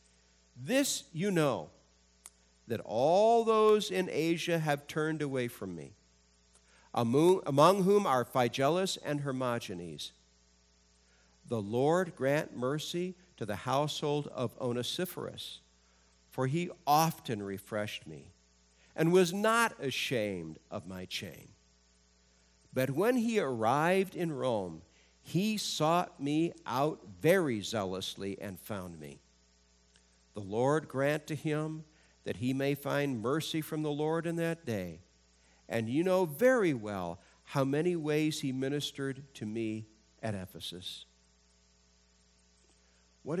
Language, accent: English, American